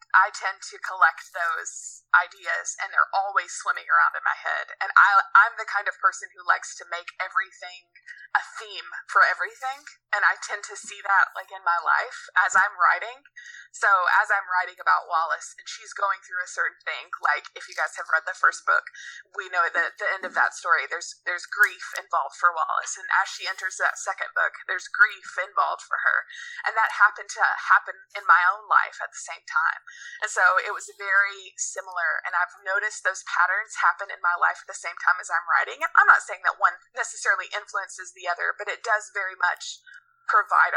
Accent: American